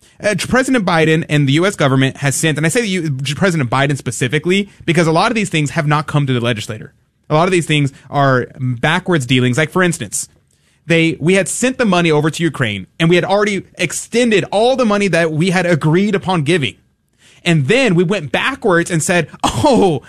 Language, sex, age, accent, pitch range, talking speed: English, male, 30-49, American, 135-180 Hz, 205 wpm